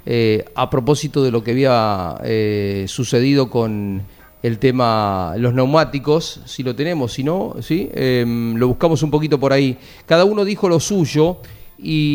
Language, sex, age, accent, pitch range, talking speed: Spanish, male, 40-59, Argentinian, 115-150 Hz, 160 wpm